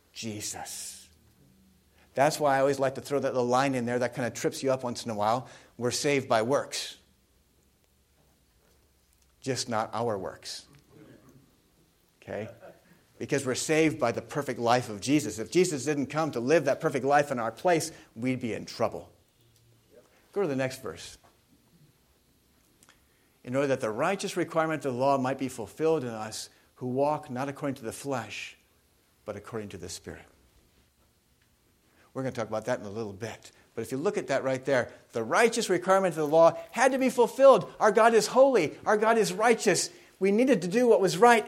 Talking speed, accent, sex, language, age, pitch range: 190 wpm, American, male, English, 50-69, 110-165 Hz